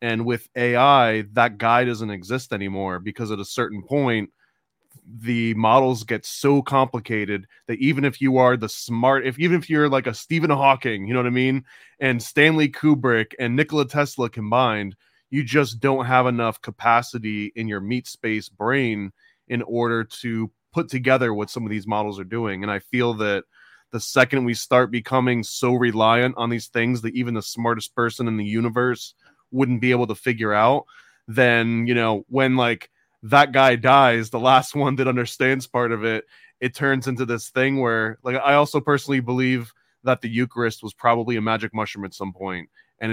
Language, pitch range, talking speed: English, 110-130 Hz, 190 wpm